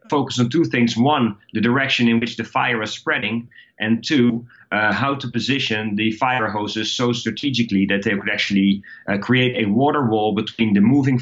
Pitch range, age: 100-120 Hz, 30-49